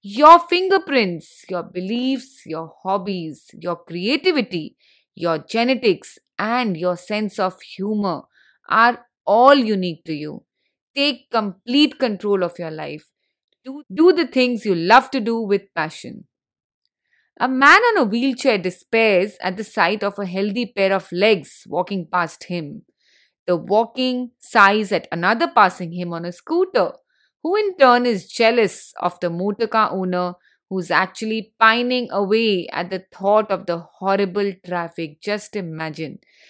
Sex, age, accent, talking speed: female, 30-49, Indian, 140 wpm